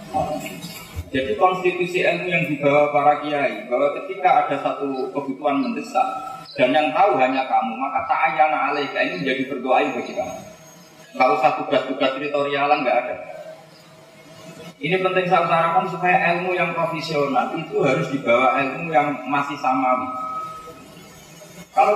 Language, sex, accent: Indonesian, male, native